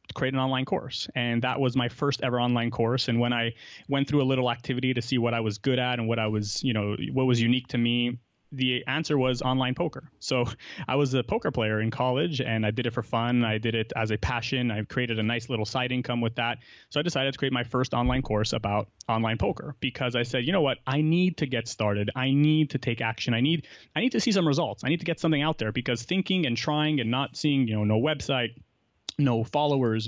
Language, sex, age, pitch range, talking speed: English, male, 30-49, 115-135 Hz, 255 wpm